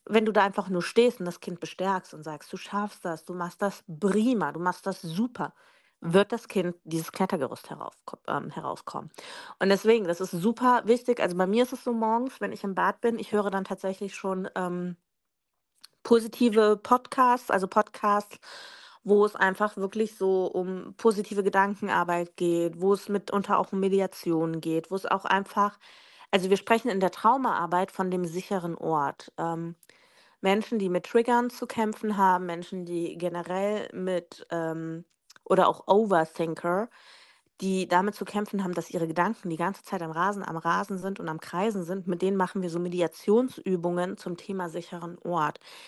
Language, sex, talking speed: German, female, 175 wpm